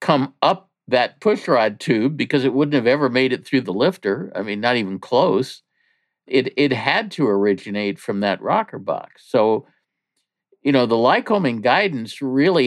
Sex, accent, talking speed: male, American, 170 wpm